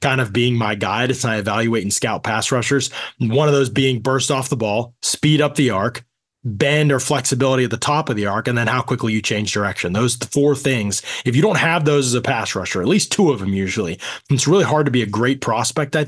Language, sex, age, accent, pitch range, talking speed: English, male, 20-39, American, 115-155 Hz, 250 wpm